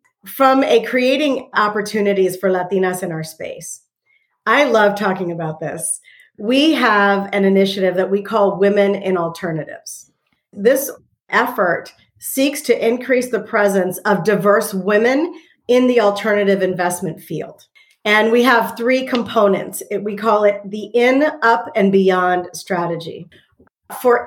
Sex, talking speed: female, 135 wpm